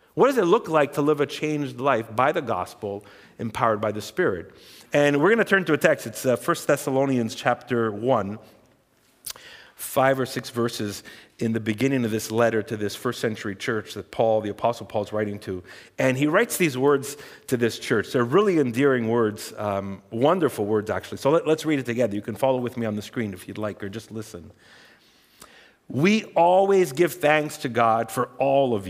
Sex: male